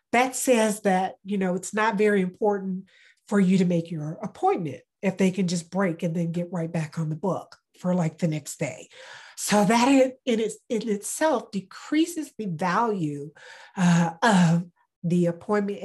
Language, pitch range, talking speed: English, 175-215 Hz, 165 wpm